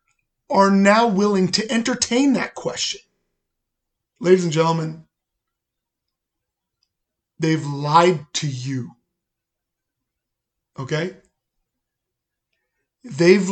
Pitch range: 155-200 Hz